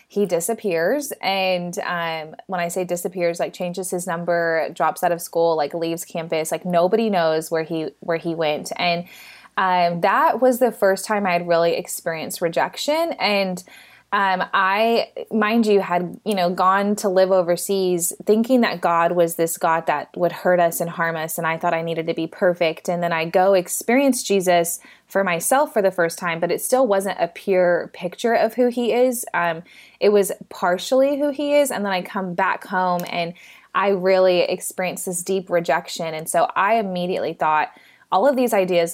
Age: 20-39